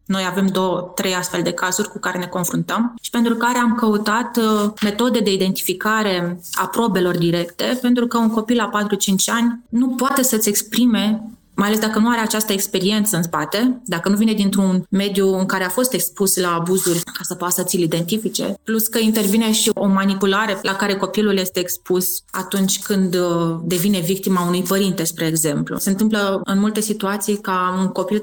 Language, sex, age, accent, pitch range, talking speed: Romanian, female, 20-39, native, 185-220 Hz, 185 wpm